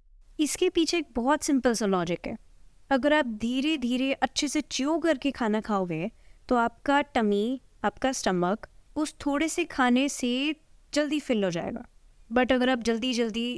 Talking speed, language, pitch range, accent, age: 165 wpm, Hindi, 230-300 Hz, native, 20-39